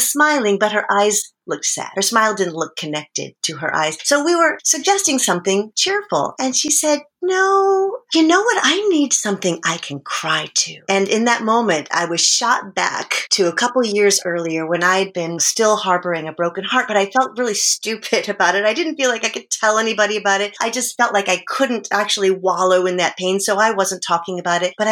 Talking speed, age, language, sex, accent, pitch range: 215 wpm, 40-59, English, female, American, 175-245 Hz